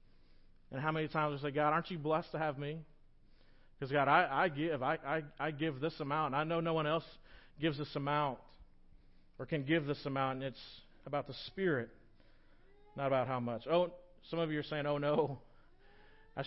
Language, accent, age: English, American, 40-59